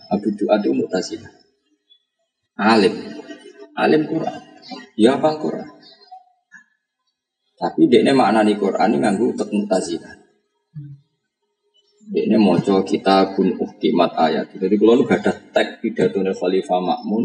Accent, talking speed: native, 65 wpm